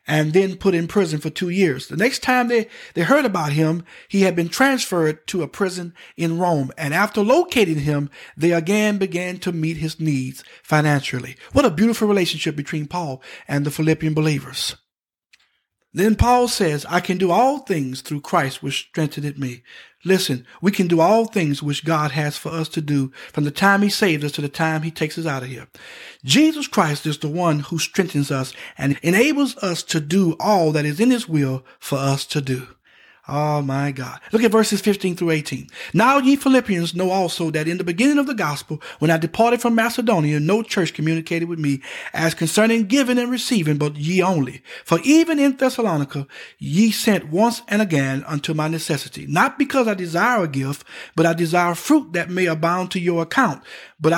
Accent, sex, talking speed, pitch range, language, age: American, male, 200 wpm, 150-215 Hz, English, 60-79